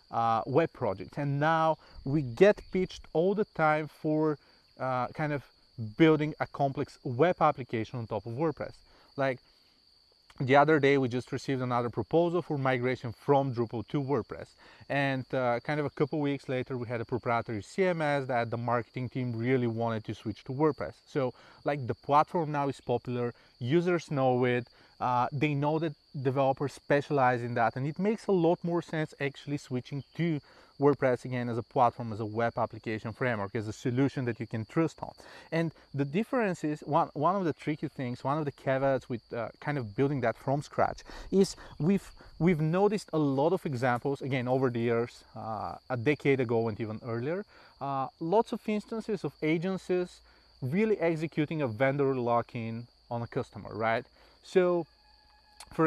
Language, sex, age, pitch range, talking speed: English, male, 30-49, 125-155 Hz, 180 wpm